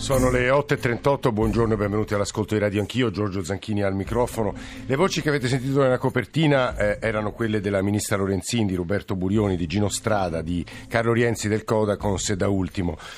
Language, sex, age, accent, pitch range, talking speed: Italian, male, 50-69, native, 105-130 Hz, 185 wpm